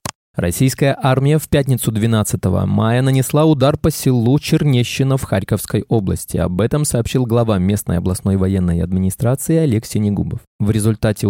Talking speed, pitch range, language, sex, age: 140 wpm, 100-145 Hz, Russian, male, 20-39